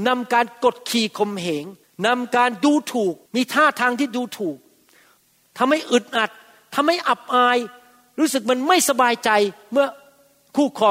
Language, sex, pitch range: Thai, male, 160-215 Hz